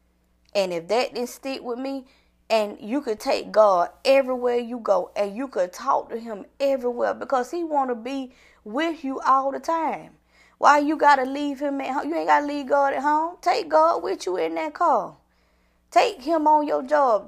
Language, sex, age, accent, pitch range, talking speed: English, female, 20-39, American, 210-300 Hz, 200 wpm